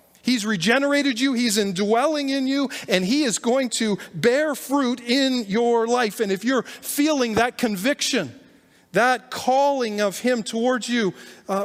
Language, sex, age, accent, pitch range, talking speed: English, male, 40-59, American, 155-235 Hz, 155 wpm